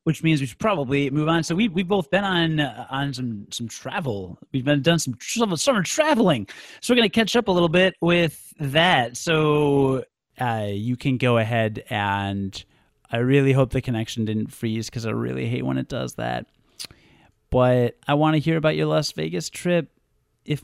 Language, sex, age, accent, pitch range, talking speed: English, male, 30-49, American, 120-185 Hz, 200 wpm